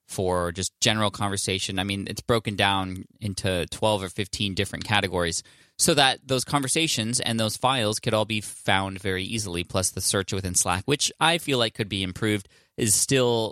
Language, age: English, 20-39